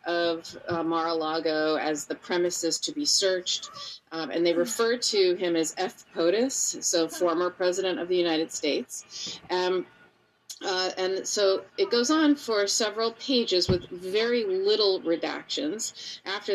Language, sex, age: English, female, 30-49